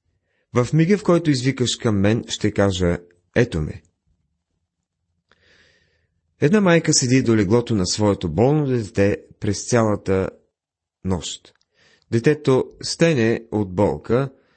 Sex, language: male, Bulgarian